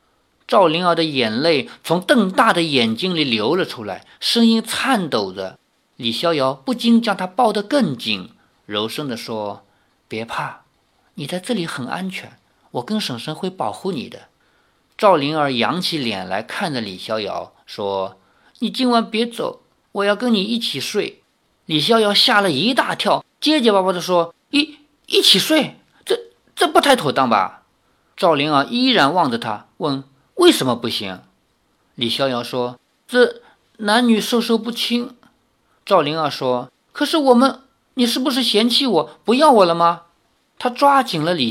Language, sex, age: Chinese, male, 50-69